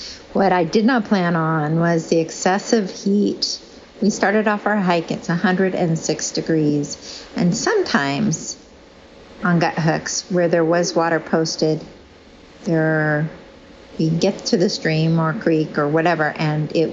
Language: English